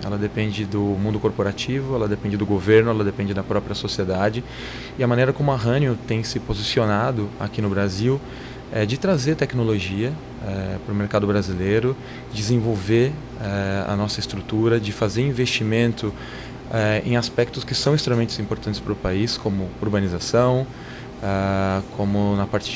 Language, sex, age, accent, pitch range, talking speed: Portuguese, male, 20-39, Brazilian, 105-125 Hz, 155 wpm